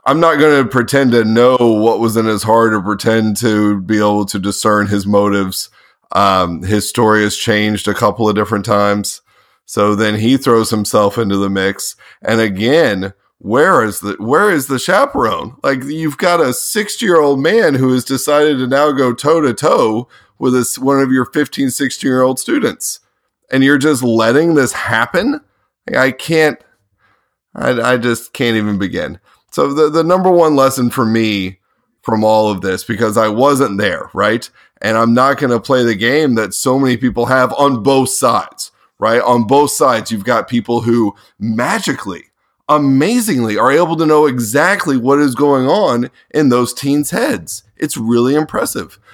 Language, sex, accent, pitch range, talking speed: English, male, American, 110-140 Hz, 175 wpm